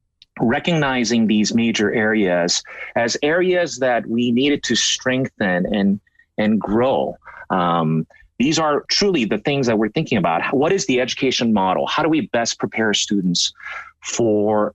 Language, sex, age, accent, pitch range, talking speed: English, male, 30-49, American, 105-140 Hz, 145 wpm